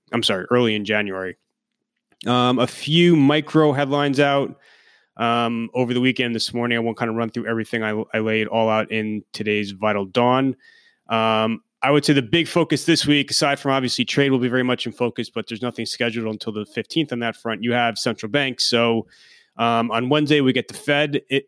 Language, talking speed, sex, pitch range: English, 210 wpm, male, 110-130 Hz